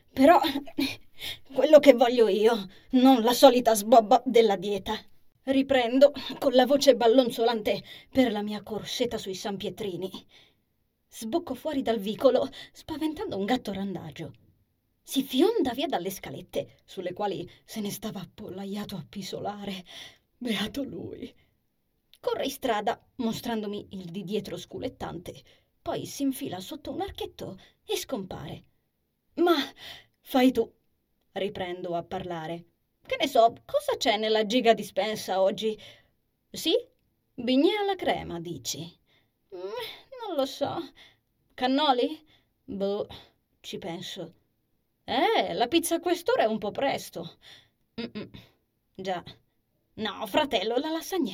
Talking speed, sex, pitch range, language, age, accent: 120 wpm, female, 190-275 Hz, Italian, 20-39, native